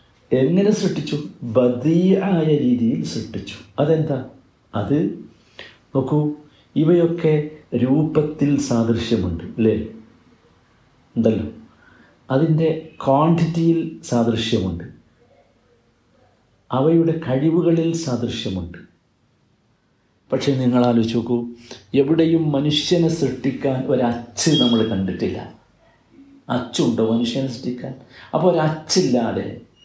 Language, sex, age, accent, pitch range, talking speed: Malayalam, male, 50-69, native, 120-170 Hz, 70 wpm